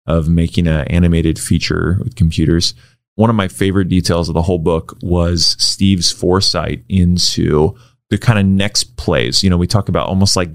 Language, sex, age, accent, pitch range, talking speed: English, male, 30-49, American, 85-115 Hz, 180 wpm